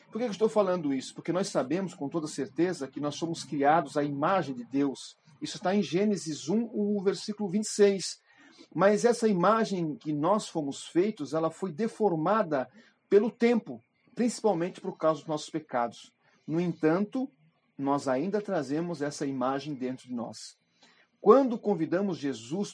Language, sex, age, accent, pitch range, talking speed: Portuguese, male, 40-59, Brazilian, 145-205 Hz, 155 wpm